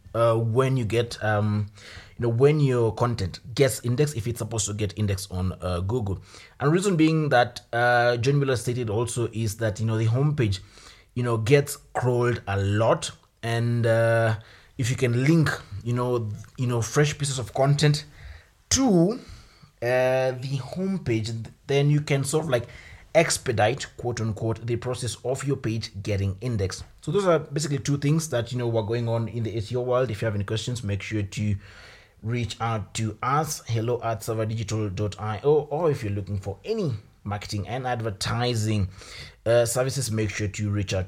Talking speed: 180 wpm